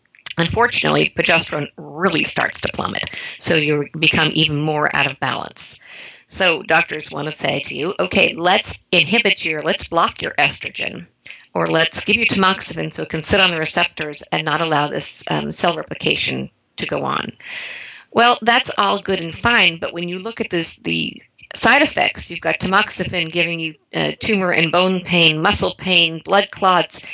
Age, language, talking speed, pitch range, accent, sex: 50-69, English, 175 wpm, 160-200 Hz, American, female